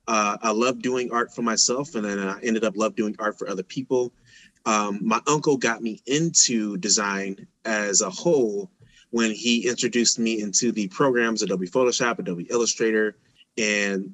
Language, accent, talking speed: English, American, 170 wpm